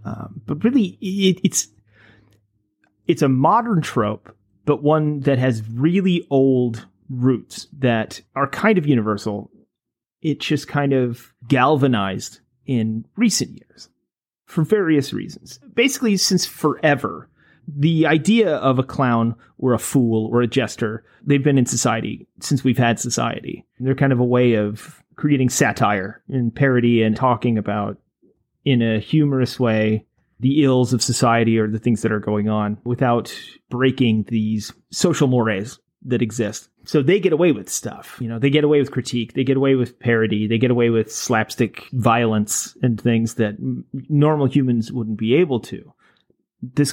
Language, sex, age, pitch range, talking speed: English, male, 30-49, 115-145 Hz, 155 wpm